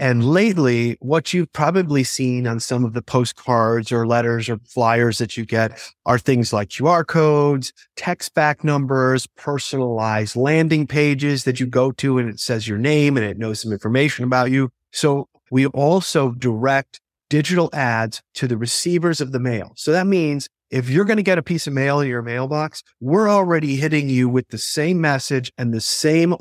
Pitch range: 120-150 Hz